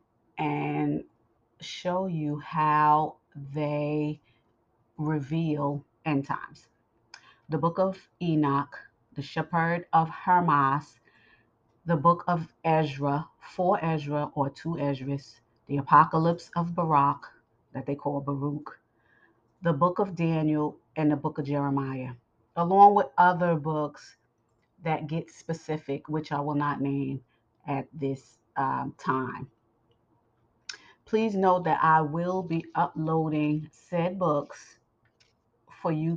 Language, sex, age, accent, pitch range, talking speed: English, female, 30-49, American, 140-170 Hz, 115 wpm